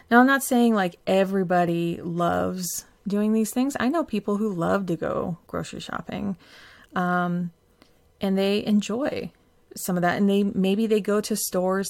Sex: female